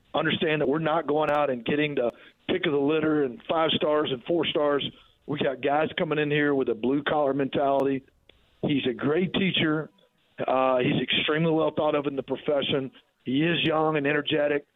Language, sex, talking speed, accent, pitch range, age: English, male, 195 wpm, American, 130-150 Hz, 40-59